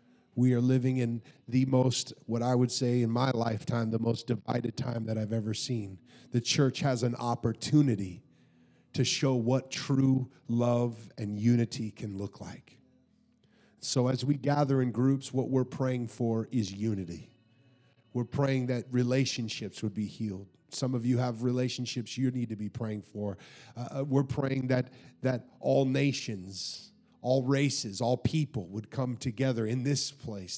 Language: English